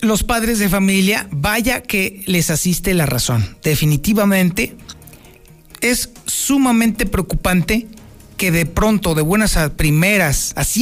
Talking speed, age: 120 wpm, 40-59